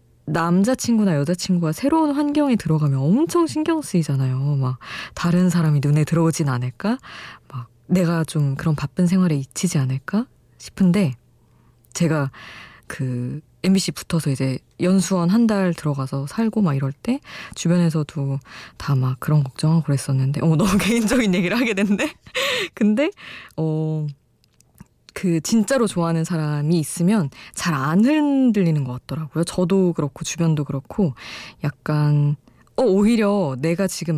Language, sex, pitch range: Korean, female, 145-195 Hz